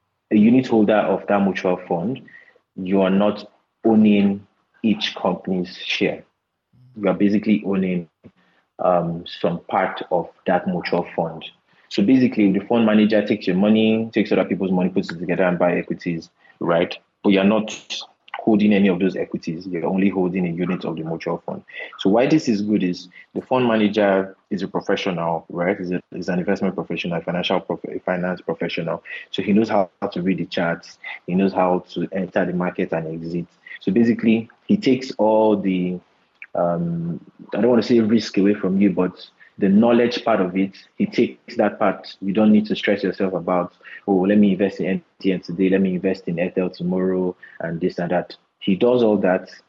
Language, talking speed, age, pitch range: English, 185 wpm, 30-49, 90-105 Hz